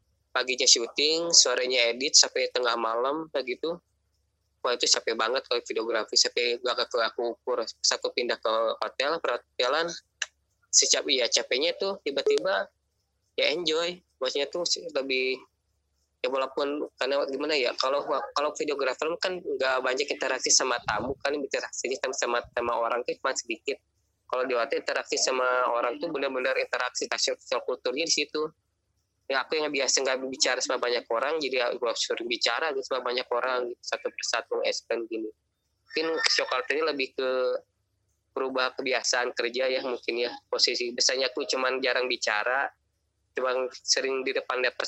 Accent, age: native, 20-39